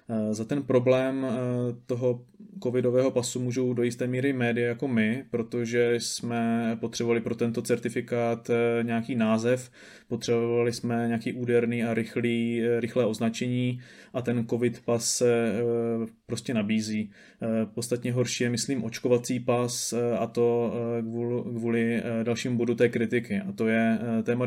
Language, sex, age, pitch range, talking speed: Czech, male, 20-39, 115-120 Hz, 130 wpm